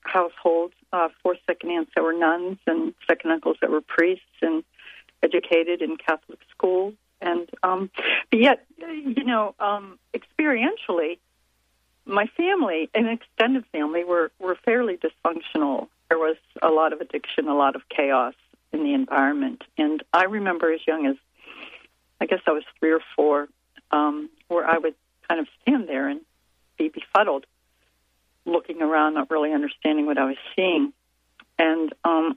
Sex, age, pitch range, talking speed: female, 60-79, 150-230 Hz, 155 wpm